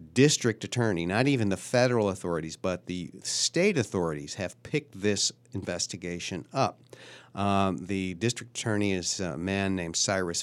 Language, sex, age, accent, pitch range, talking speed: English, male, 50-69, American, 95-120 Hz, 145 wpm